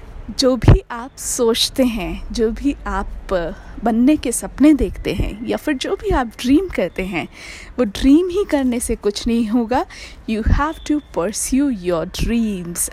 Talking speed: 160 wpm